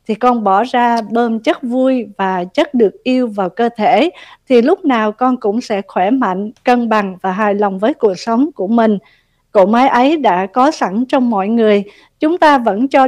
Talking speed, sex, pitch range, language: 205 wpm, female, 205-270 Hz, Vietnamese